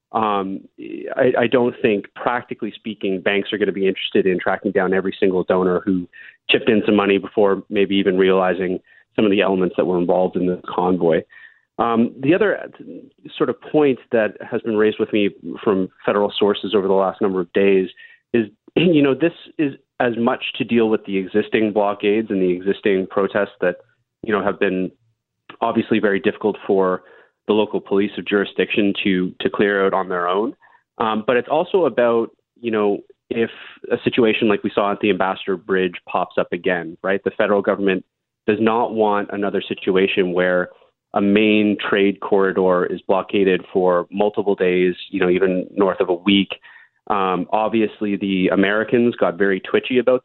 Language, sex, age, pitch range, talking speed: English, male, 30-49, 95-115 Hz, 180 wpm